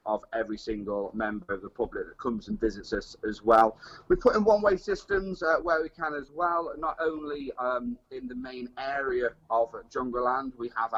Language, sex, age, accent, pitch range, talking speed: English, male, 30-49, British, 120-155 Hz, 215 wpm